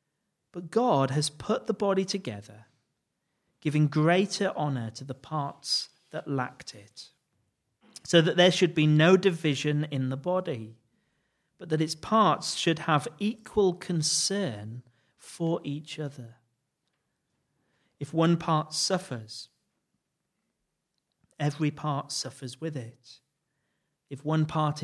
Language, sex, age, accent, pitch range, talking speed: English, male, 40-59, British, 135-180 Hz, 120 wpm